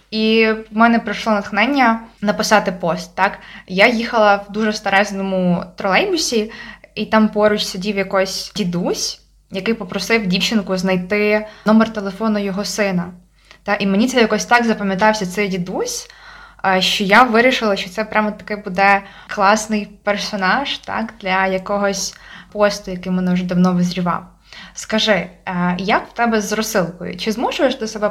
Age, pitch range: 20-39, 195-225 Hz